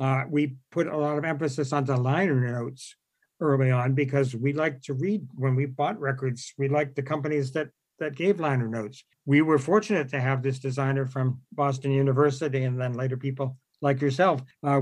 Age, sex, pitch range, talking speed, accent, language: 60-79, male, 130-155 Hz, 195 wpm, American, English